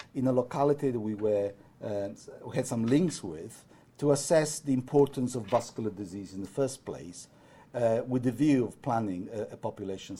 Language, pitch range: English, 110-140 Hz